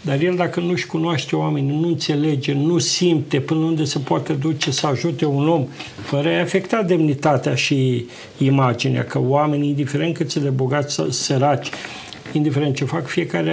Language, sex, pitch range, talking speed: Romanian, male, 130-165 Hz, 175 wpm